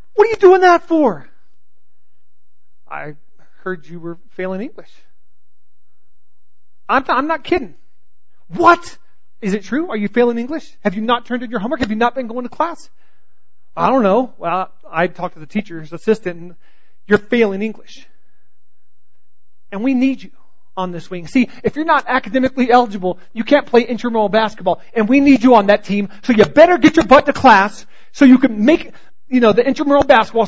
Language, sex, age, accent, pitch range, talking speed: English, male, 40-59, American, 165-255 Hz, 185 wpm